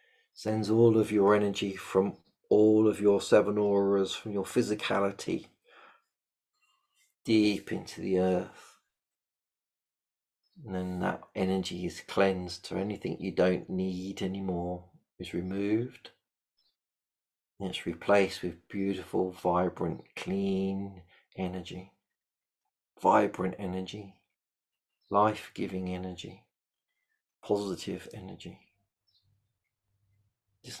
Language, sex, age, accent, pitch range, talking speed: English, male, 40-59, British, 90-100 Hz, 95 wpm